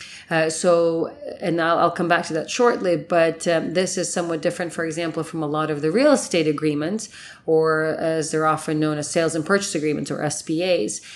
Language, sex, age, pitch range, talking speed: English, female, 30-49, 155-190 Hz, 205 wpm